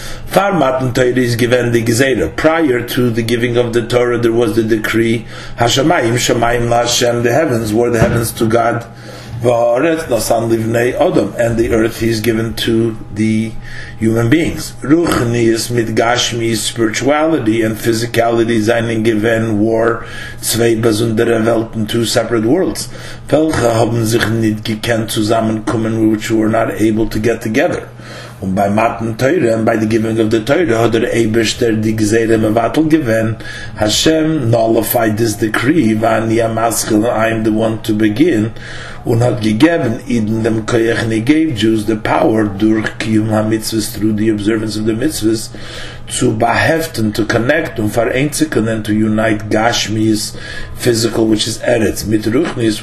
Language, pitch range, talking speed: English, 110-120 Hz, 135 wpm